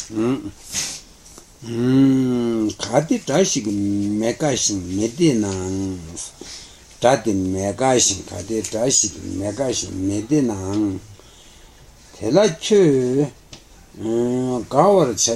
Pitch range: 100-135 Hz